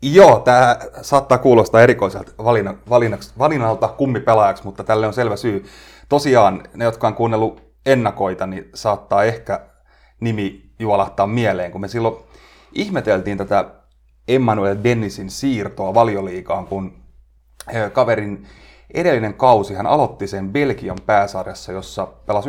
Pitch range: 95-125 Hz